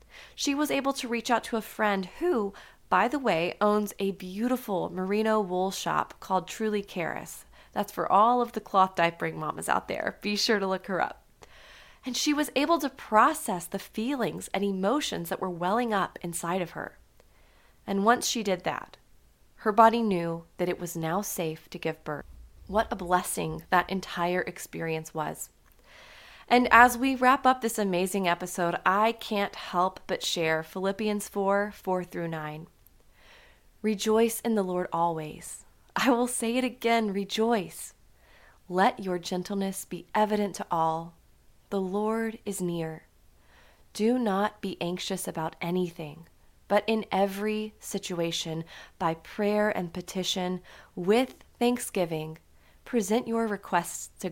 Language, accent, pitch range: English, American, 175-220 Hz